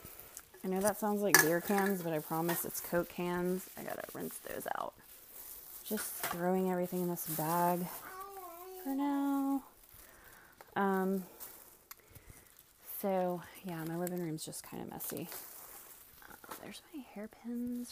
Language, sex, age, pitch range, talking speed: English, female, 20-39, 180-245 Hz, 135 wpm